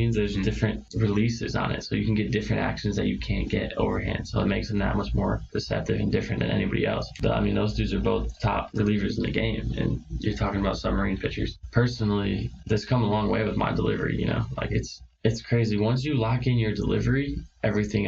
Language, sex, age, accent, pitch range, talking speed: English, male, 20-39, American, 105-110 Hz, 230 wpm